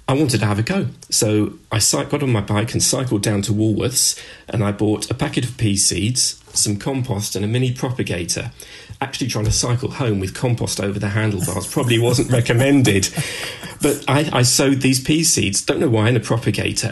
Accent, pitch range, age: British, 100-120 Hz, 40-59